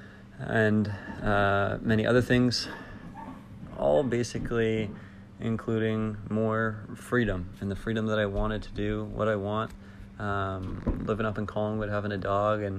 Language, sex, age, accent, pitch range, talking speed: English, male, 20-39, American, 100-110 Hz, 140 wpm